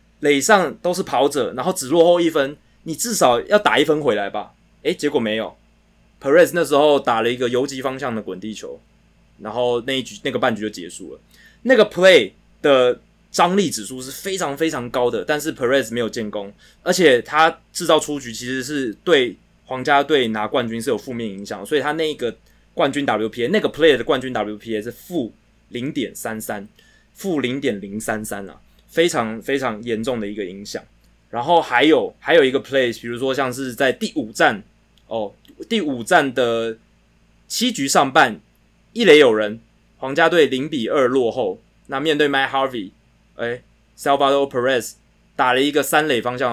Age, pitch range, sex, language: 20-39, 115-160 Hz, male, Chinese